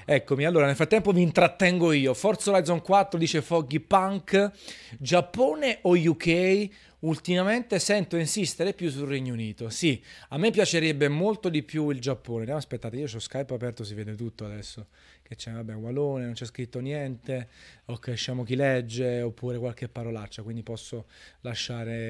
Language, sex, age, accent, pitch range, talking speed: Italian, male, 30-49, native, 125-175 Hz, 160 wpm